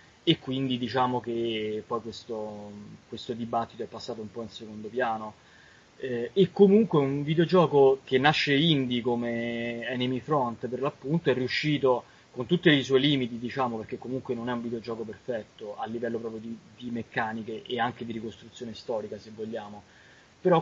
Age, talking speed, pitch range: 20-39, 165 wpm, 115-140 Hz